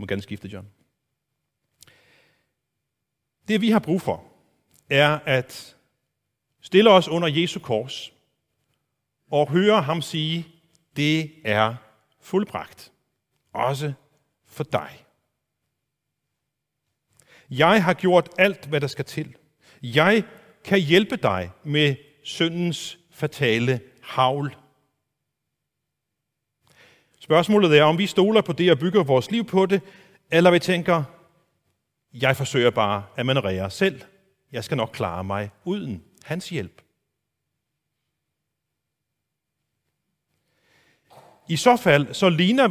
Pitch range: 120-175 Hz